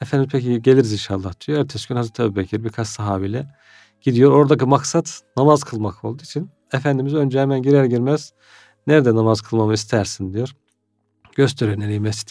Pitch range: 110-140 Hz